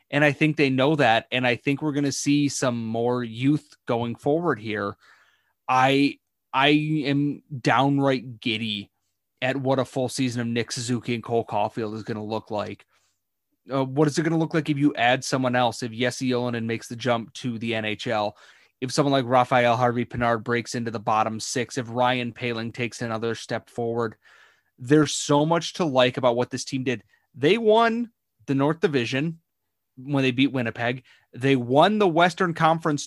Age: 30-49